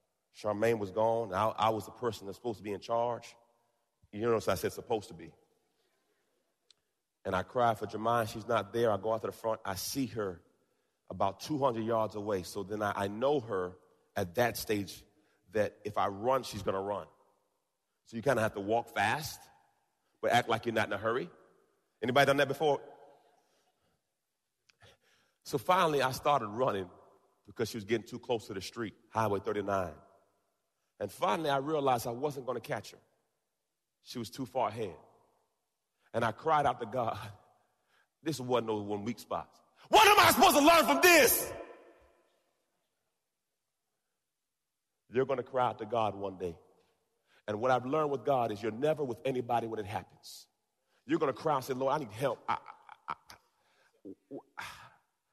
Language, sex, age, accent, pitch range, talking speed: English, male, 30-49, American, 105-130 Hz, 175 wpm